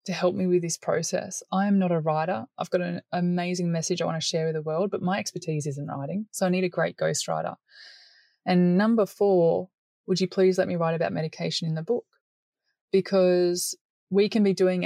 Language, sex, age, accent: English, female, 20-39, Australian